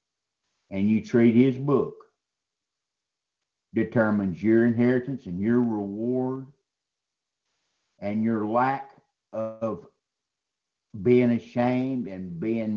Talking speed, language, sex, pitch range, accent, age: 90 wpm, English, male, 105-120 Hz, American, 60-79